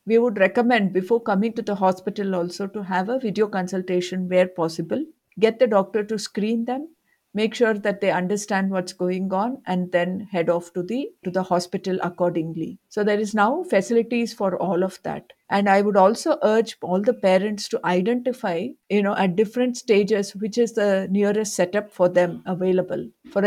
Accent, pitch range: Indian, 185-225 Hz